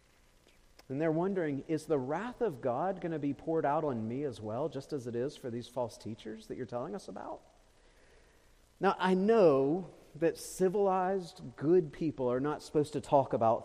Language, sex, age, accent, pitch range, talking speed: English, male, 40-59, American, 110-160 Hz, 190 wpm